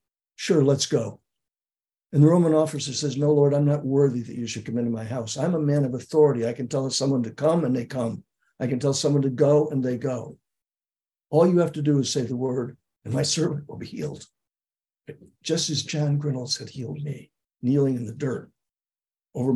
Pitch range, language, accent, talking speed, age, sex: 130-150 Hz, English, American, 215 wpm, 60-79, male